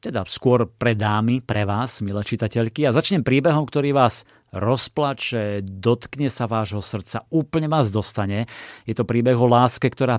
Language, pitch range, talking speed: Slovak, 105-125 Hz, 165 wpm